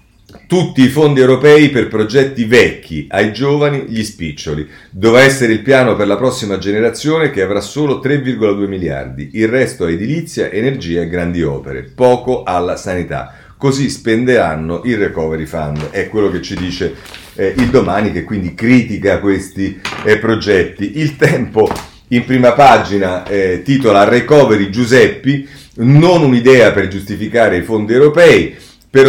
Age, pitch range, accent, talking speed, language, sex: 40-59, 95-125 Hz, native, 145 wpm, Italian, male